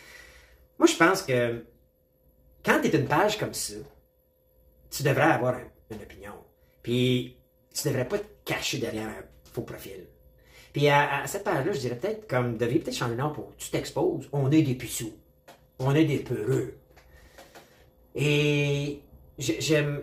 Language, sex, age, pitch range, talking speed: French, male, 30-49, 120-155 Hz, 165 wpm